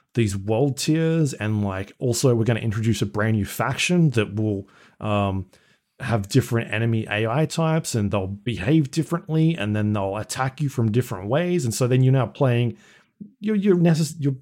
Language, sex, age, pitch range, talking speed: English, male, 30-49, 100-130 Hz, 180 wpm